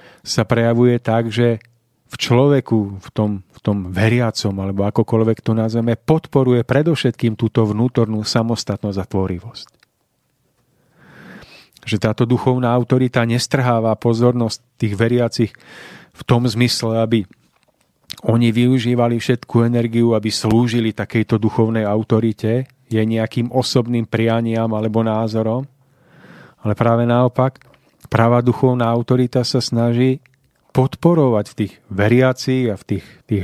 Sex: male